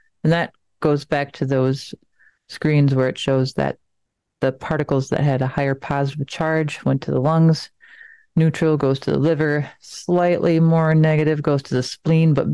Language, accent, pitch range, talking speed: English, American, 135-160 Hz, 170 wpm